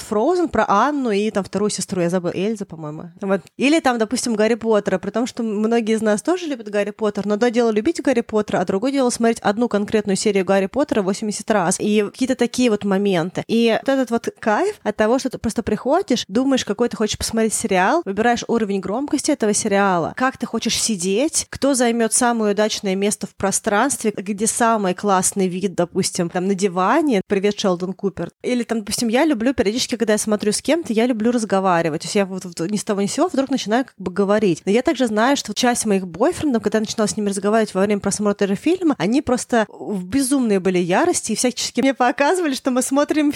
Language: Russian